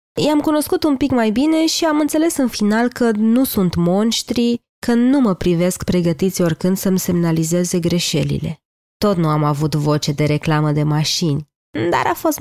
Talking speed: 175 wpm